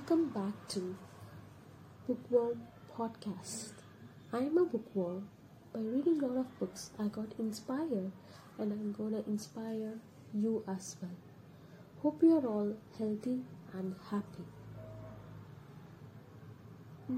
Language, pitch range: English, 175-240 Hz